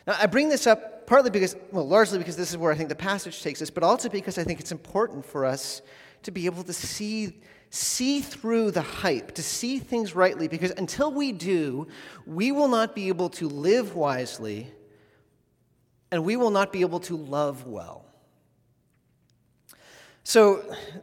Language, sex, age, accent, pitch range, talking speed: English, male, 30-49, American, 150-200 Hz, 180 wpm